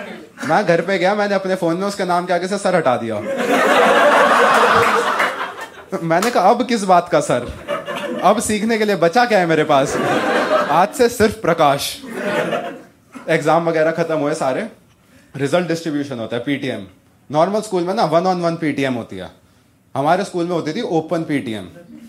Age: 20-39